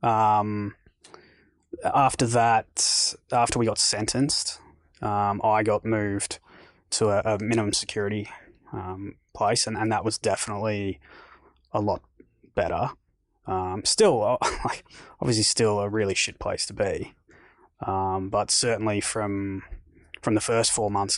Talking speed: 130 wpm